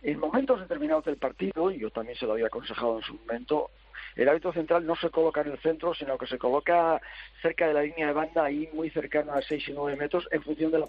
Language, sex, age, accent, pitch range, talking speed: Spanish, male, 50-69, Spanish, 135-185 Hz, 255 wpm